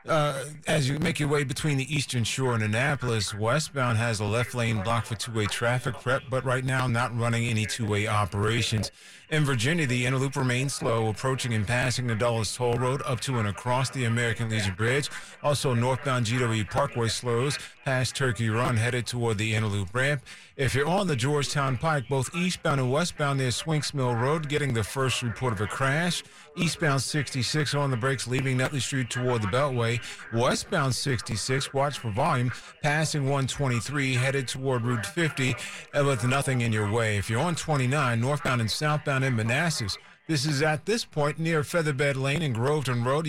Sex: male